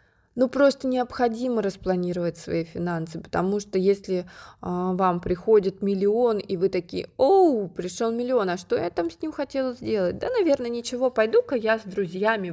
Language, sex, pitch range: Russian, female, 185-230 Hz